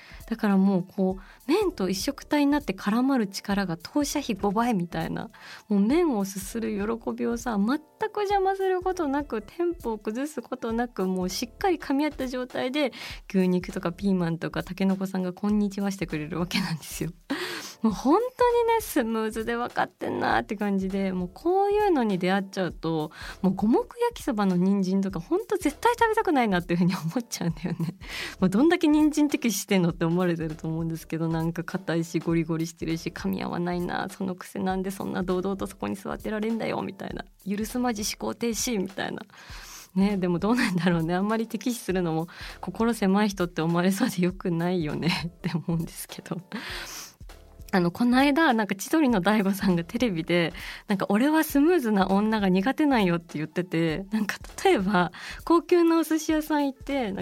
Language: Japanese